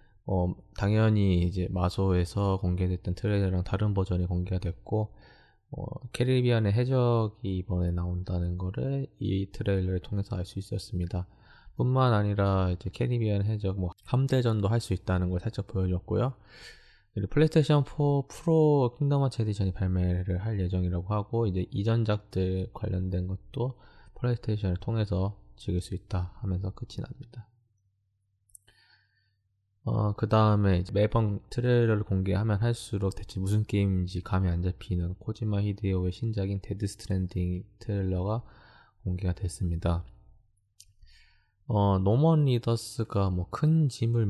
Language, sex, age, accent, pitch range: Korean, male, 20-39, native, 90-110 Hz